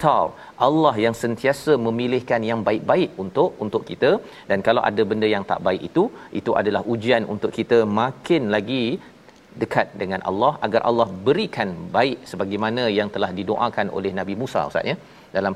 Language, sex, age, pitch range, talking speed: Malayalam, male, 40-59, 110-140 Hz, 160 wpm